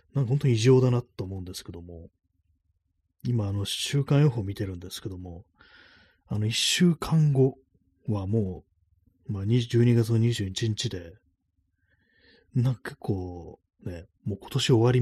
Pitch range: 90-115 Hz